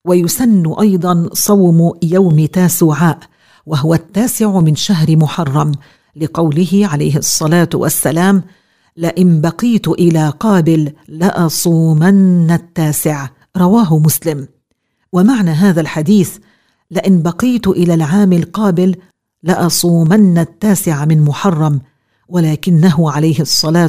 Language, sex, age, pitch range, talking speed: English, female, 50-69, 160-195 Hz, 95 wpm